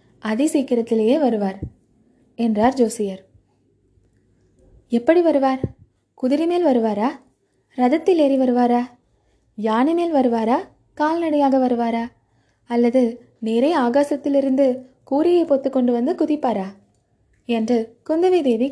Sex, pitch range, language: female, 215-275 Hz, Tamil